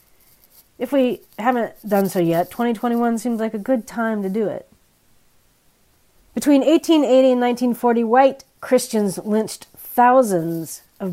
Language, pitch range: English, 190-260 Hz